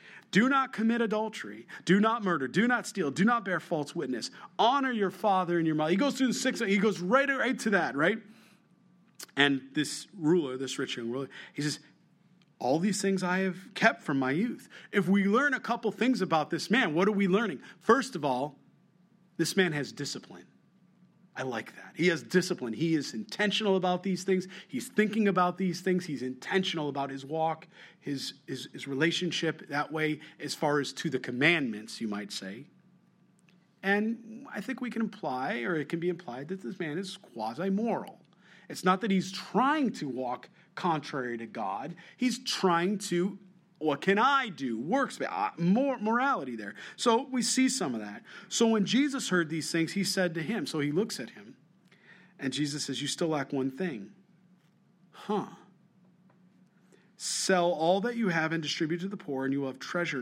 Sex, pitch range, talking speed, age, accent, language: male, 150-200 Hz, 190 wpm, 40-59, American, English